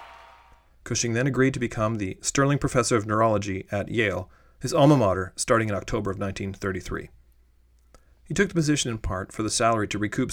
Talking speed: 180 wpm